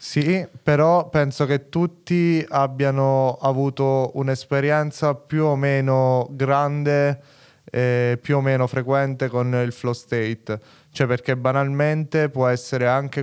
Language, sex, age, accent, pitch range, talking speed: Italian, male, 20-39, native, 120-135 Hz, 120 wpm